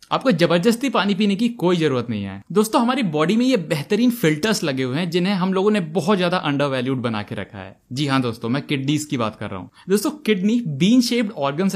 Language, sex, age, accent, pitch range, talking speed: Hindi, male, 20-39, native, 140-225 Hz, 235 wpm